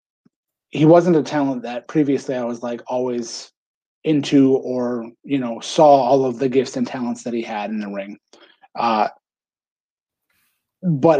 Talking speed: 155 wpm